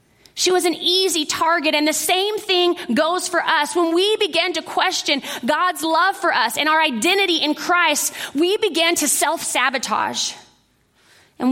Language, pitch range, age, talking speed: English, 255-345 Hz, 30-49, 160 wpm